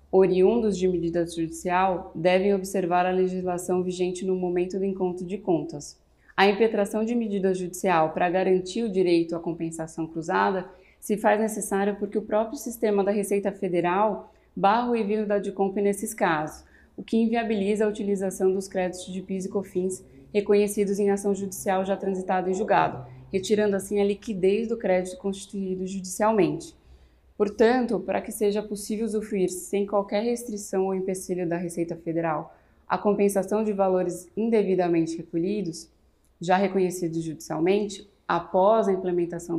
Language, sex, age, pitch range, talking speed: Portuguese, female, 20-39, 180-205 Hz, 145 wpm